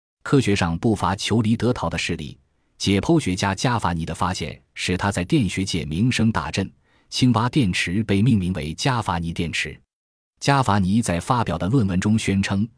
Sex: male